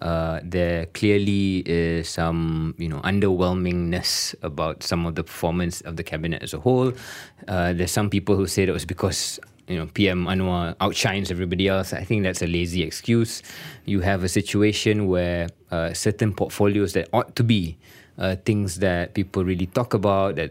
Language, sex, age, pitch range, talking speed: English, male, 20-39, 85-100 Hz, 180 wpm